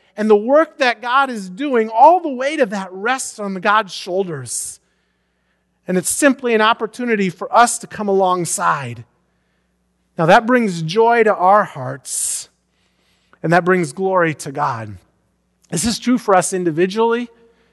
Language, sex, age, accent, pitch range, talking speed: English, male, 40-59, American, 160-210 Hz, 150 wpm